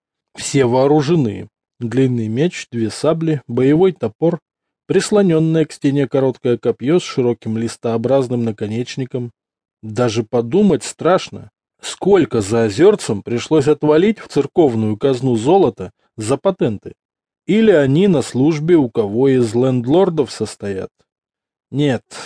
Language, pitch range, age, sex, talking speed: English, 115-160 Hz, 20-39, male, 110 wpm